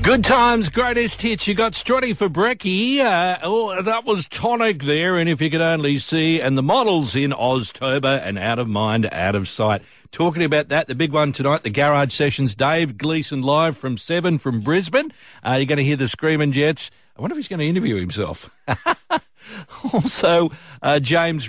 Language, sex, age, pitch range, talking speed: English, male, 50-69, 115-165 Hz, 195 wpm